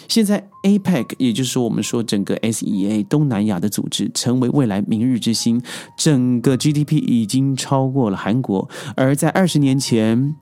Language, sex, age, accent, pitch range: Chinese, male, 30-49, native, 110-155 Hz